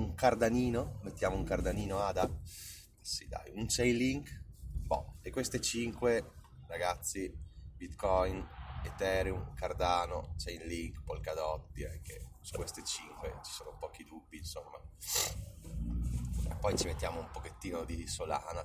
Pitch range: 80-95 Hz